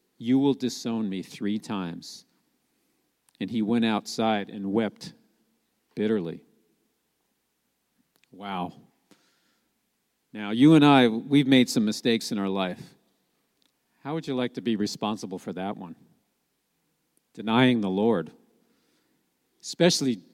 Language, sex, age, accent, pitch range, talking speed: English, male, 50-69, American, 110-150 Hz, 115 wpm